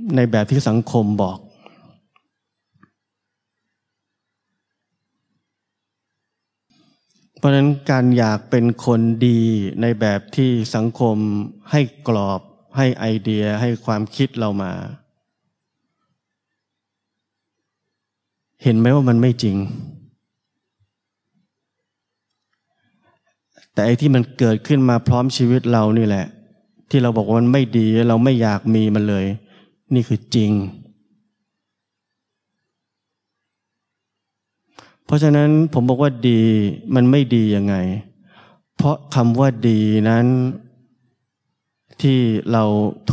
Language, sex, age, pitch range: Thai, male, 20-39, 105-130 Hz